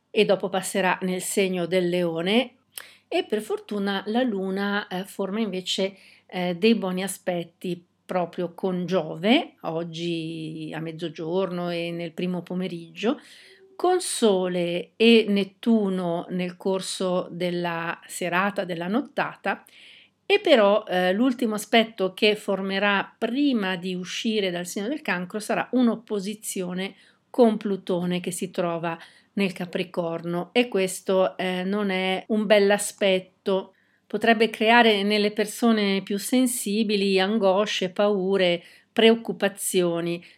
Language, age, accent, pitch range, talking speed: Italian, 50-69, native, 180-210 Hz, 110 wpm